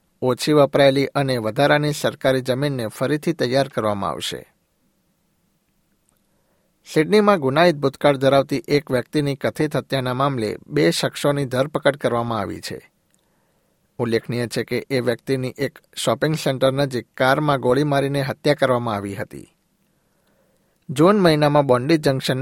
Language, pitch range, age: Gujarati, 125-150 Hz, 60-79